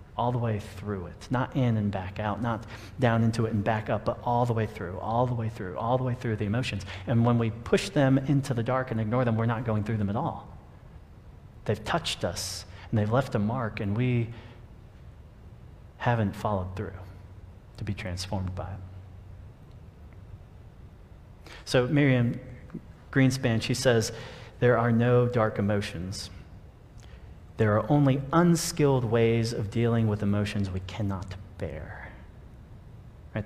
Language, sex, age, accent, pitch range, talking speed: English, male, 40-59, American, 95-120 Hz, 165 wpm